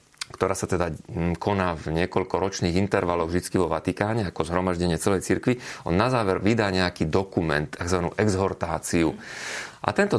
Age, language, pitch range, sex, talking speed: 30-49, Slovak, 90-110 Hz, male, 145 wpm